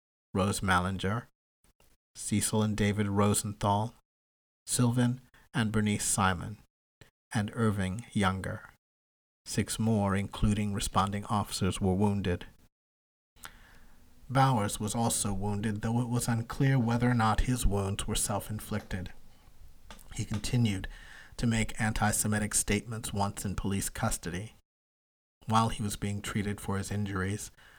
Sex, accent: male, American